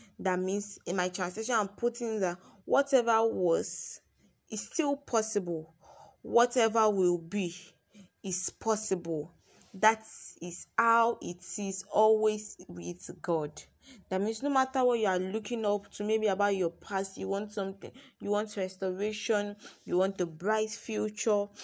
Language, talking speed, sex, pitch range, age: English, 140 wpm, female, 180-220 Hz, 20-39